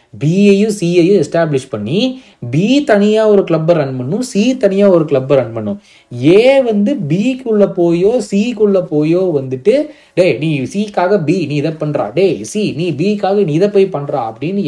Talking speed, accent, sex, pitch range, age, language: 170 wpm, native, male, 115-175 Hz, 20-39, Tamil